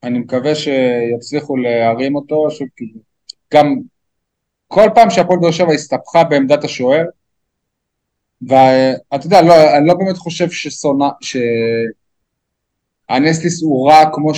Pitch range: 135-175 Hz